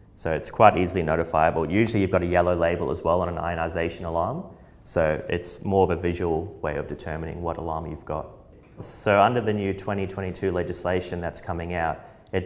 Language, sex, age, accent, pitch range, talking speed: English, male, 30-49, Australian, 80-90 Hz, 195 wpm